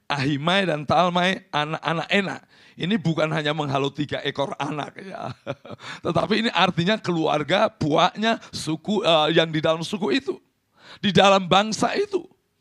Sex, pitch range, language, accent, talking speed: male, 160-220 Hz, Indonesian, native, 140 wpm